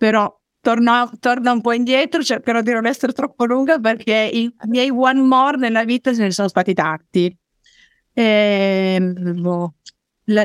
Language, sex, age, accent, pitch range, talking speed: Italian, female, 30-49, native, 180-240 Hz, 145 wpm